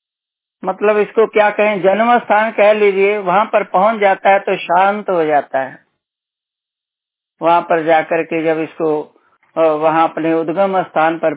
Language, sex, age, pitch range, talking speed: Hindi, male, 60-79, 160-200 Hz, 155 wpm